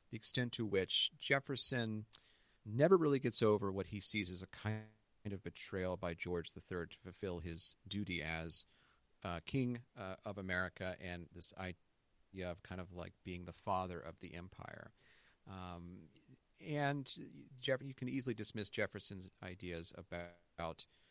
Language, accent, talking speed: English, American, 150 wpm